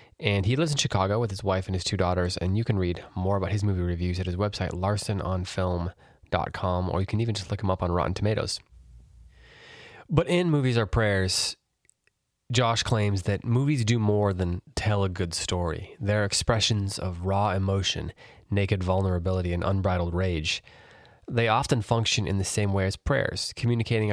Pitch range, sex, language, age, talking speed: 90-110 Hz, male, English, 20-39, 180 wpm